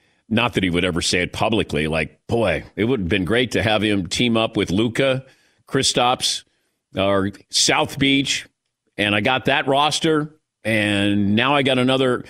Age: 50-69